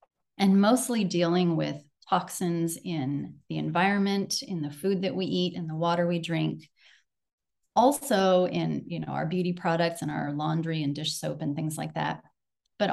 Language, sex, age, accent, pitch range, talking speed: English, female, 30-49, American, 155-185 Hz, 160 wpm